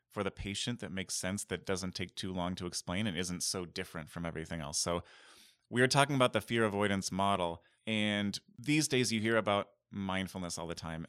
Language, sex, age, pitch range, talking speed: English, male, 30-49, 90-115 Hz, 210 wpm